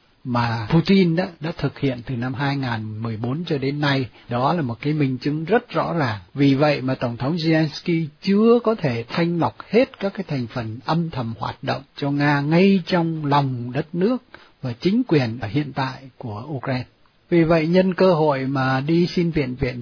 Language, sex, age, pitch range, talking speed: Vietnamese, male, 60-79, 125-165 Hz, 200 wpm